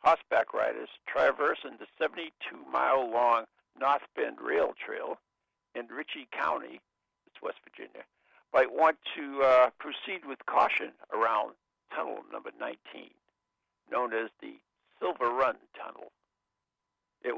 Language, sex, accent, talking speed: English, male, American, 115 wpm